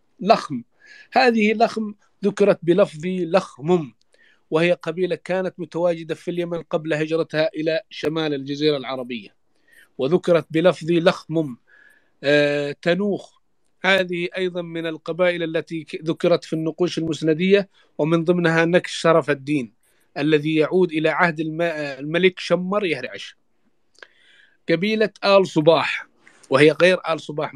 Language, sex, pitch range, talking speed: English, male, 145-180 Hz, 110 wpm